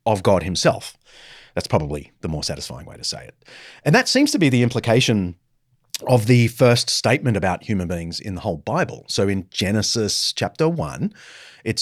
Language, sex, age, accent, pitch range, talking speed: English, male, 30-49, Australian, 100-140 Hz, 185 wpm